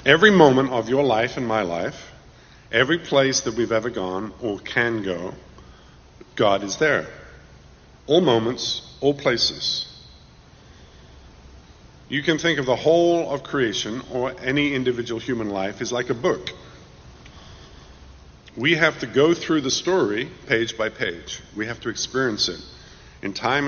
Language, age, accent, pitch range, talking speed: English, 50-69, American, 80-130 Hz, 145 wpm